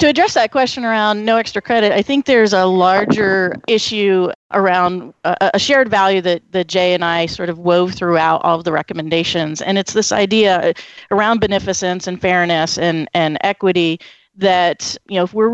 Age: 30-49